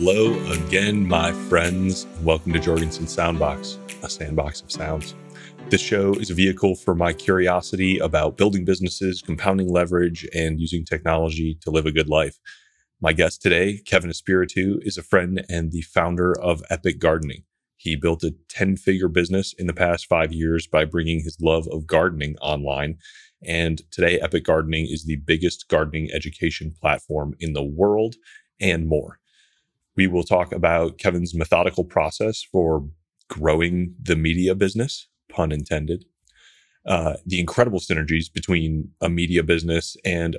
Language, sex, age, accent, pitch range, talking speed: English, male, 30-49, American, 80-95 Hz, 150 wpm